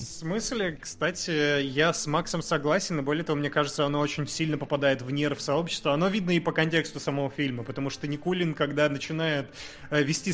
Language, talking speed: Russian, 185 wpm